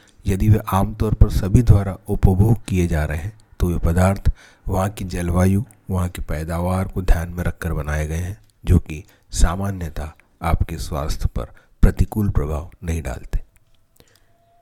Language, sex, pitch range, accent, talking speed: Hindi, male, 80-100 Hz, native, 150 wpm